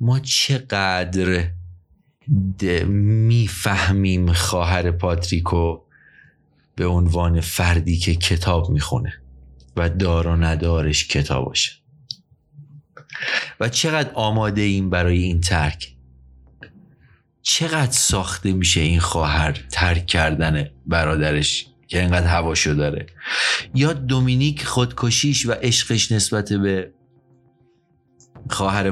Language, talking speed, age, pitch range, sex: Persian, 95 wpm, 30-49, 90-125 Hz, male